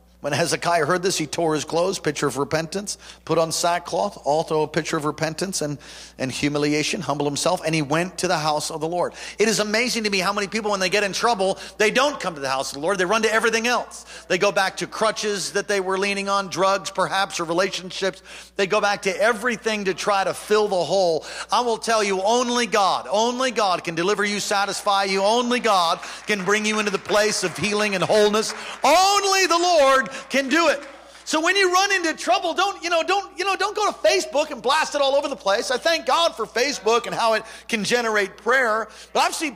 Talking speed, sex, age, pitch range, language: 230 wpm, male, 50-69, 185-265 Hz, English